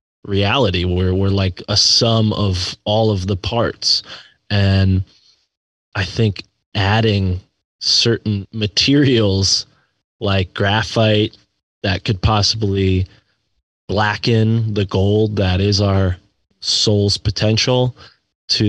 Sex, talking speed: male, 100 wpm